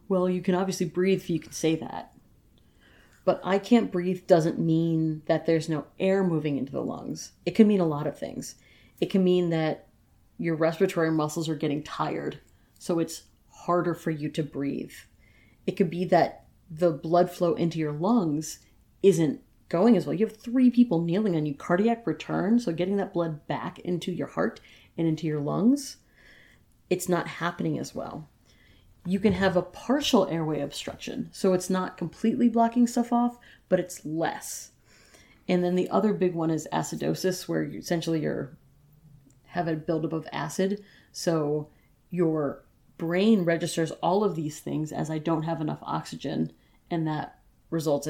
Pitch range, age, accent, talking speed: 150-185 Hz, 30-49, American, 175 wpm